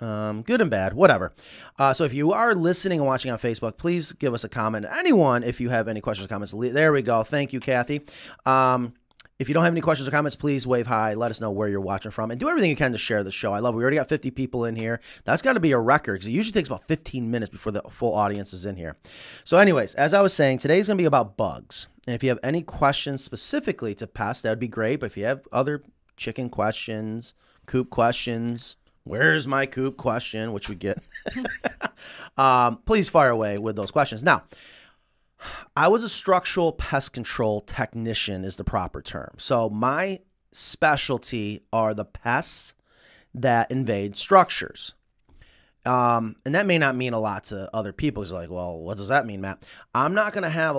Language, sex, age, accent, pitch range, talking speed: English, male, 30-49, American, 110-140 Hz, 215 wpm